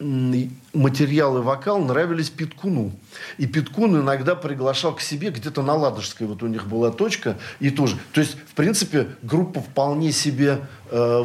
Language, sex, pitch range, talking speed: Russian, male, 125-155 Hz, 155 wpm